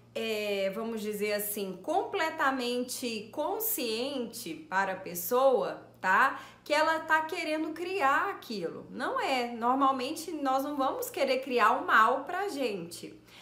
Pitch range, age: 230-300 Hz, 30-49